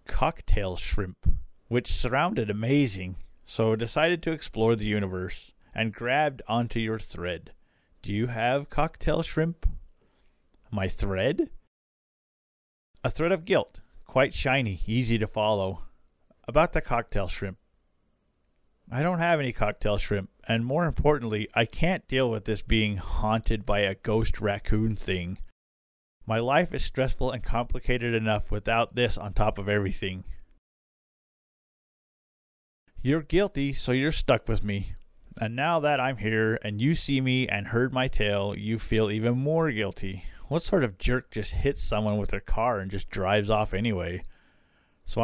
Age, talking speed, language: 40-59, 145 wpm, English